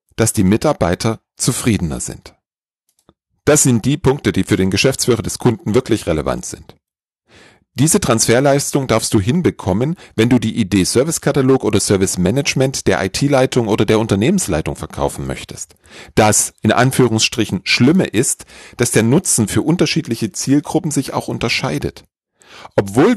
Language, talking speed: German, 140 wpm